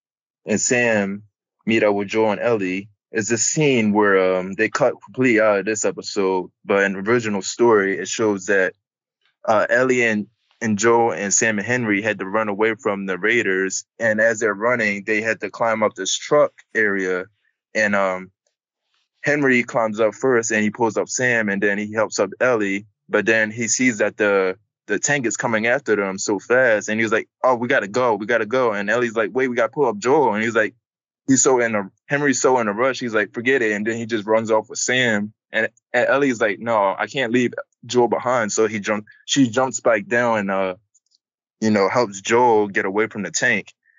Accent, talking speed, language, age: American, 220 wpm, English, 20-39